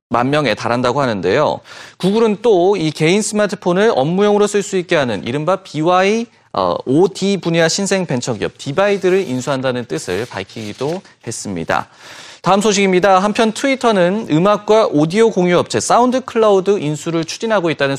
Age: 30-49